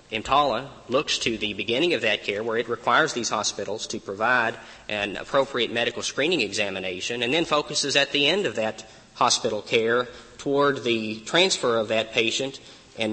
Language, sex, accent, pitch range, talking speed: English, male, American, 115-140 Hz, 170 wpm